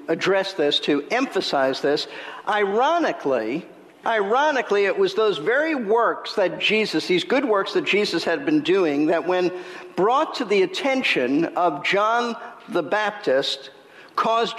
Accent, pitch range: American, 185-280 Hz